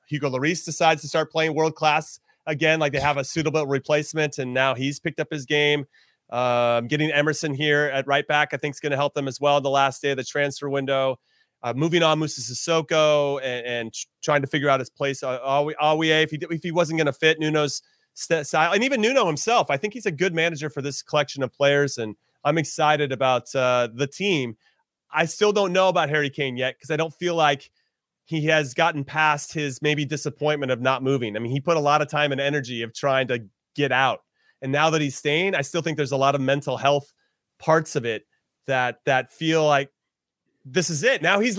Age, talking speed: 30-49, 230 wpm